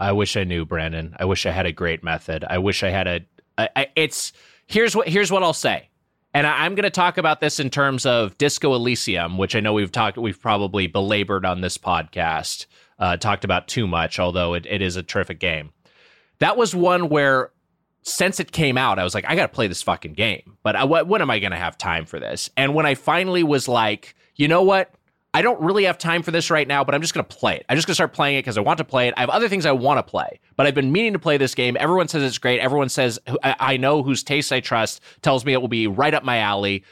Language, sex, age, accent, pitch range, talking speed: English, male, 20-39, American, 100-150 Hz, 270 wpm